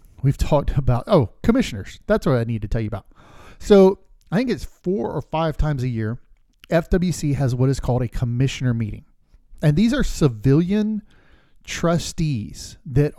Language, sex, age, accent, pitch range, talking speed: English, male, 40-59, American, 125-160 Hz, 170 wpm